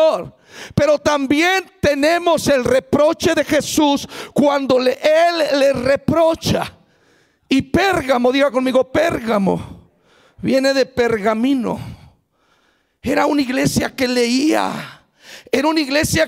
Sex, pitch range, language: male, 270-315 Hz, Spanish